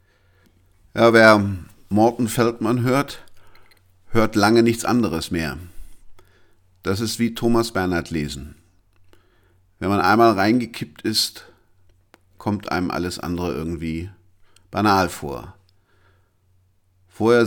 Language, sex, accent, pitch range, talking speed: German, male, German, 85-110 Hz, 100 wpm